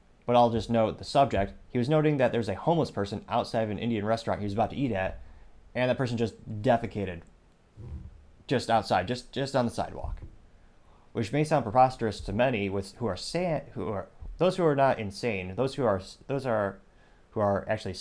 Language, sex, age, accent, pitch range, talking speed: English, male, 30-49, American, 95-135 Hz, 205 wpm